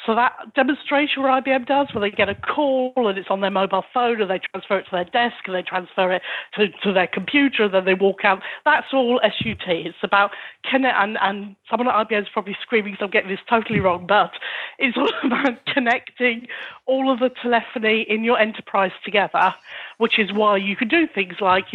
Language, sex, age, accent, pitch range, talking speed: English, female, 40-59, British, 195-245 Hz, 215 wpm